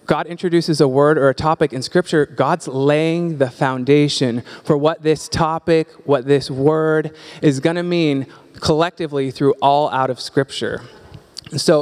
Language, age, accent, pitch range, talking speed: English, 20-39, American, 140-165 Hz, 155 wpm